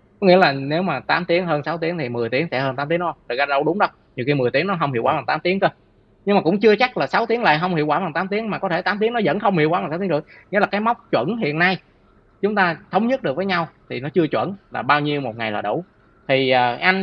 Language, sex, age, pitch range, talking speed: Vietnamese, male, 20-39, 120-180 Hz, 315 wpm